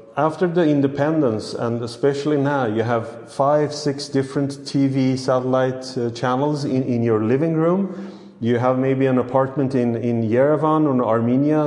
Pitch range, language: 110-140 Hz, English